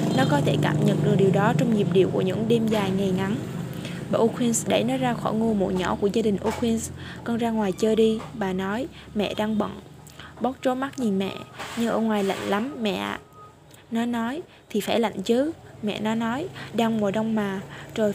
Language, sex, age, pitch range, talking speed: Vietnamese, female, 20-39, 195-230 Hz, 220 wpm